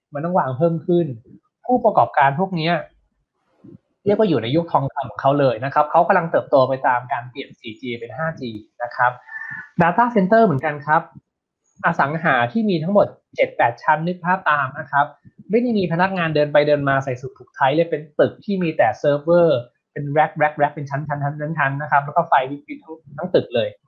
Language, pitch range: Thai, 135-175 Hz